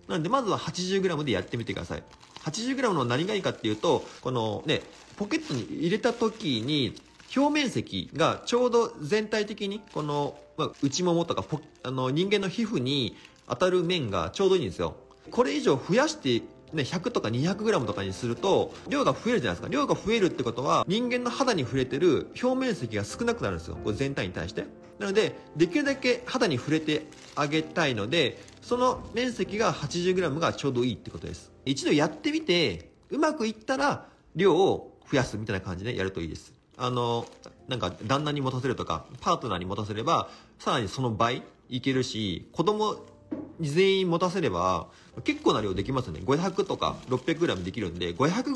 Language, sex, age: Japanese, male, 40-59